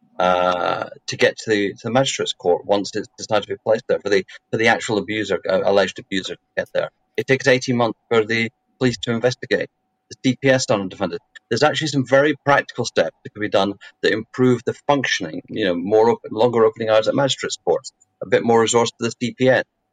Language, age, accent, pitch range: English, 40-59, British, 105-135 Hz